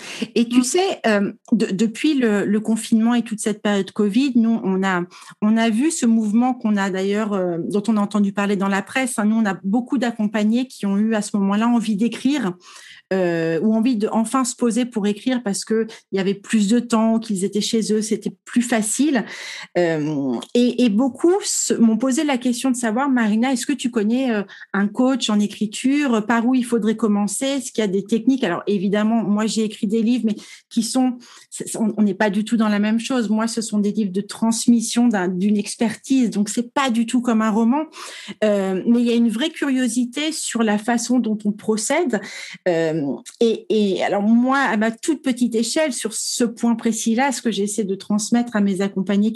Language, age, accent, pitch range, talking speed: French, 40-59, French, 210-245 Hz, 215 wpm